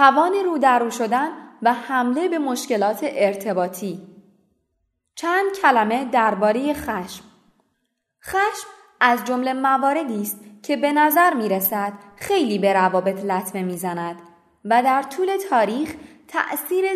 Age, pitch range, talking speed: 20-39, 200-320 Hz, 120 wpm